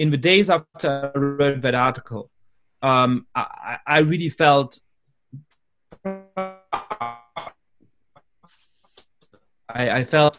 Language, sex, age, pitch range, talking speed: English, male, 30-49, 120-155 Hz, 100 wpm